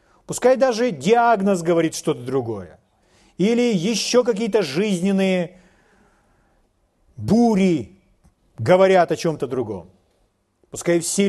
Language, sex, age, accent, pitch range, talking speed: Russian, male, 40-59, native, 160-205 Hz, 90 wpm